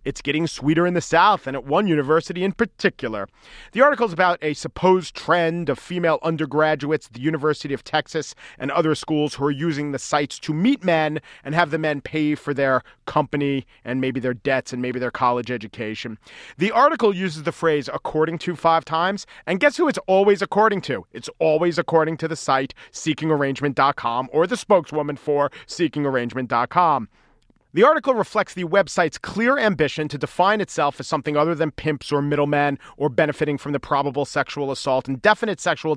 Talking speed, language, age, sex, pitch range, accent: 185 wpm, English, 40-59, male, 140-180 Hz, American